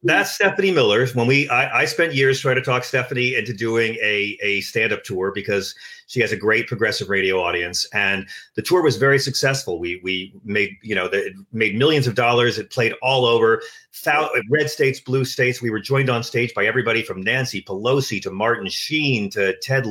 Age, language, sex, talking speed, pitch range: 40-59, English, male, 200 wpm, 105-135 Hz